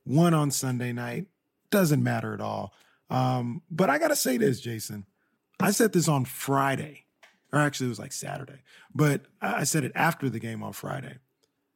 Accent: American